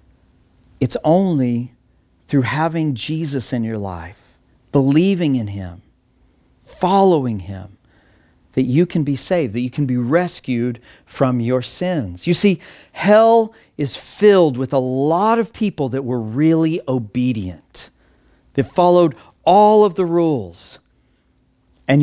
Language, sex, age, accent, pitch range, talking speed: English, male, 40-59, American, 120-165 Hz, 130 wpm